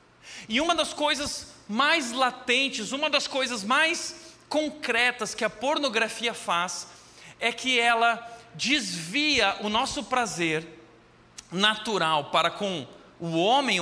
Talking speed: 115 wpm